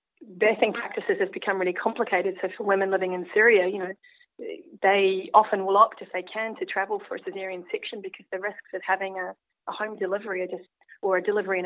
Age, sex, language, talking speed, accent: 30-49, female, English, 215 wpm, Australian